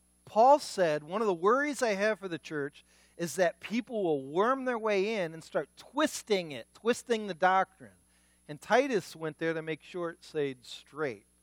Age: 50-69